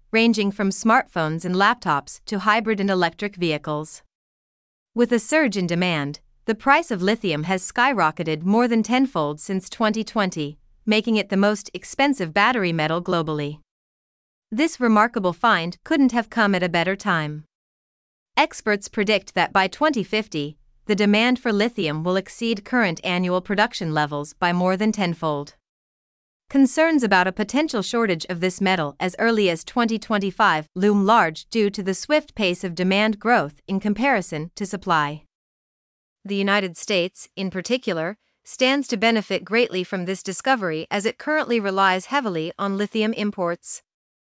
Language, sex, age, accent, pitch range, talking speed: English, female, 30-49, American, 175-220 Hz, 150 wpm